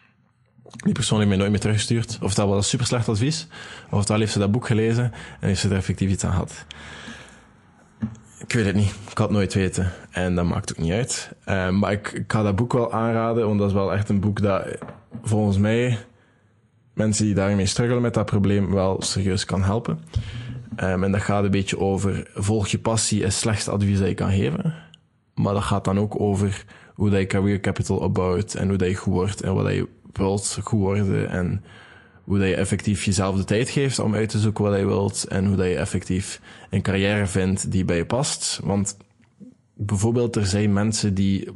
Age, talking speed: 20-39, 205 wpm